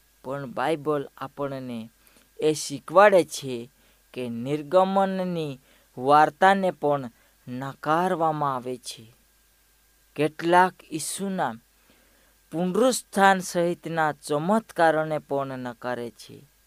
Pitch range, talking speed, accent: 140-180 Hz, 45 wpm, native